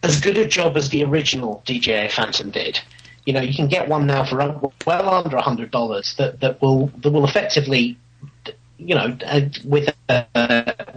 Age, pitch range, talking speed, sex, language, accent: 40-59, 120-150 Hz, 180 wpm, male, English, British